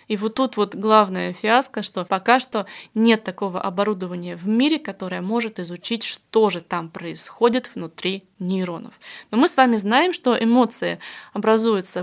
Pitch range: 195-245 Hz